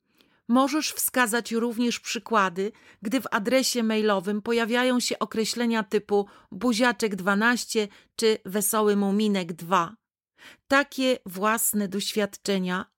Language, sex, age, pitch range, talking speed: Polish, female, 40-59, 195-240 Hz, 95 wpm